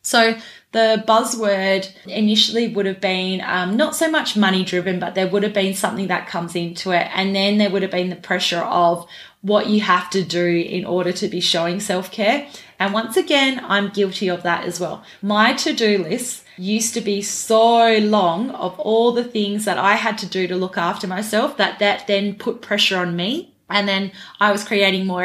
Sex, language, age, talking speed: female, English, 20-39, 205 wpm